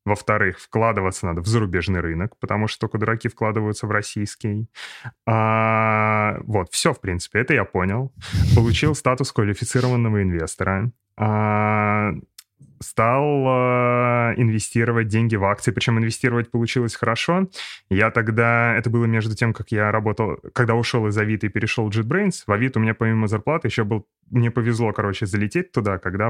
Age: 20-39